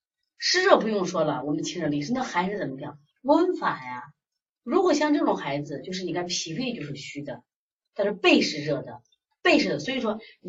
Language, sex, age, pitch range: Chinese, female, 30-49, 150-235 Hz